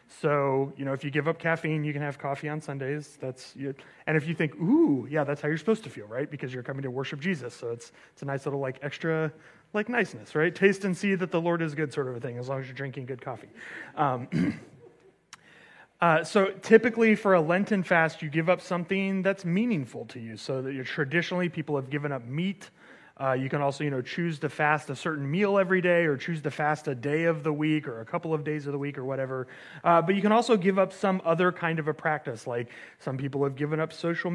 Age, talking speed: 30-49, 250 wpm